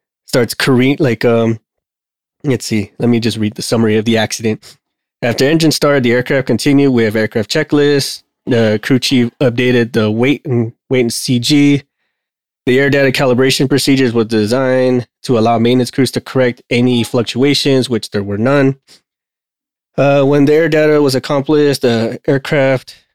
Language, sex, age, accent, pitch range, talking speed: English, male, 20-39, American, 115-135 Hz, 165 wpm